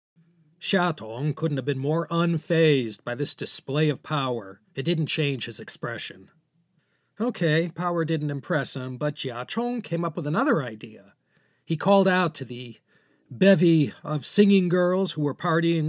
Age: 40-59